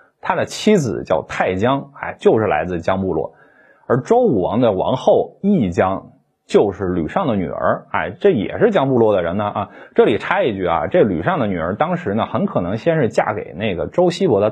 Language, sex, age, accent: Chinese, male, 20-39, native